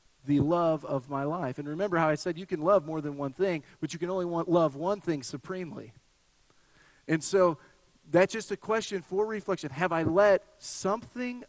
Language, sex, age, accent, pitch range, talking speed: English, male, 40-59, American, 145-195 Hz, 200 wpm